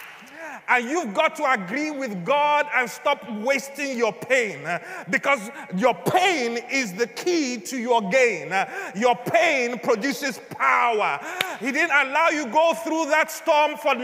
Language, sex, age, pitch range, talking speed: English, male, 30-49, 250-315 Hz, 145 wpm